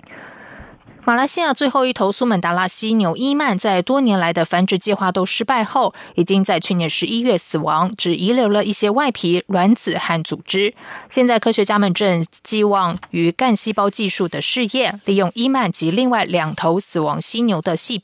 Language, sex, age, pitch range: German, female, 20-39, 175-235 Hz